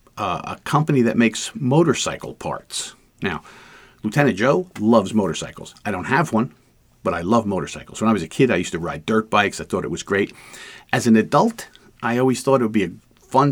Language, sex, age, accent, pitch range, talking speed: English, male, 50-69, American, 100-125 Hz, 210 wpm